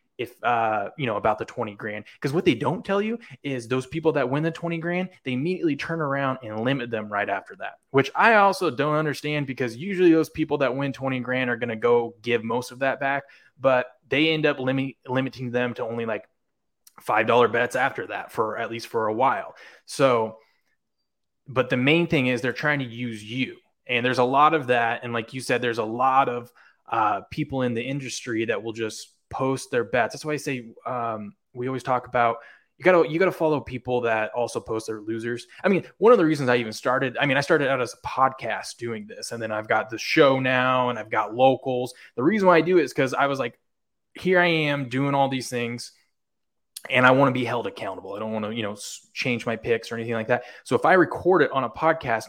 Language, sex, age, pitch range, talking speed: English, male, 20-39, 115-140 Hz, 235 wpm